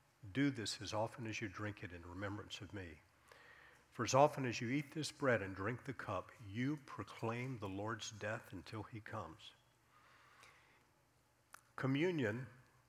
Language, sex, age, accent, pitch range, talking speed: English, male, 50-69, American, 100-125 Hz, 155 wpm